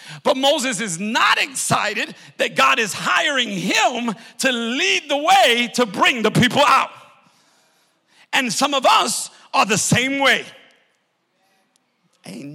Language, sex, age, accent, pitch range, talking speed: English, male, 50-69, American, 200-270 Hz, 135 wpm